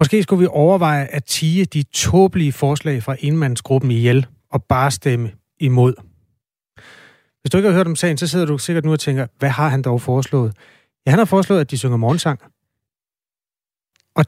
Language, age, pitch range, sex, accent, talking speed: Danish, 30-49, 125-150 Hz, male, native, 185 wpm